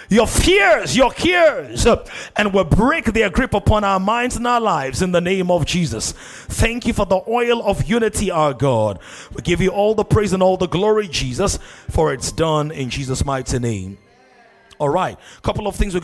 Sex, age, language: male, 30-49, English